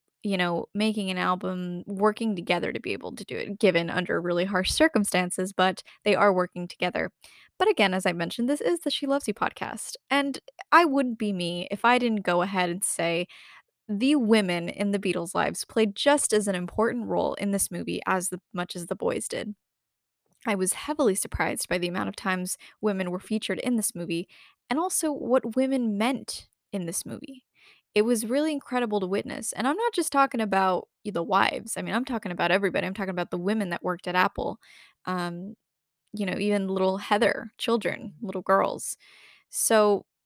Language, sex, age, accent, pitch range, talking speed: English, female, 10-29, American, 185-250 Hz, 195 wpm